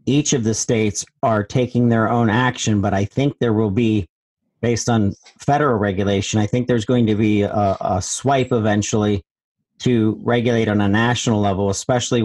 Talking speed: 175 wpm